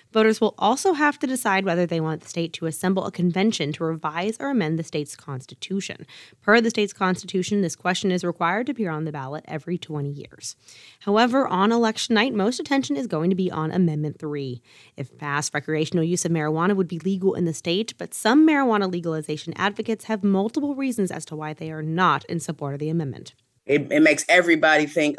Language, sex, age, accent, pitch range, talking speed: English, female, 20-39, American, 150-195 Hz, 205 wpm